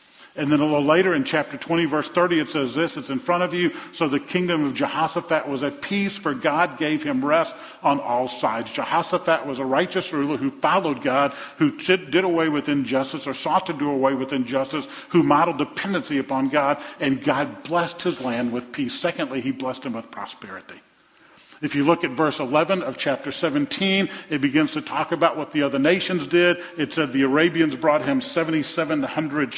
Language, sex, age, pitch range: English, male, 50-69, 140-180 Hz